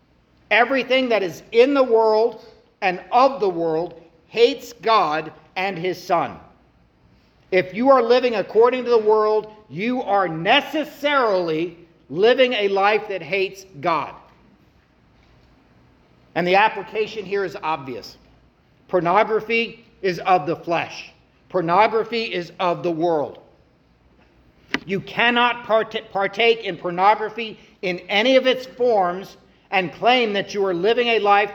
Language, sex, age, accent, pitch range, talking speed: English, male, 50-69, American, 180-230 Hz, 125 wpm